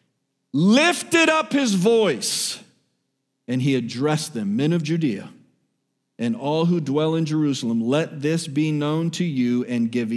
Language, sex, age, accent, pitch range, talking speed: English, male, 40-59, American, 130-205 Hz, 150 wpm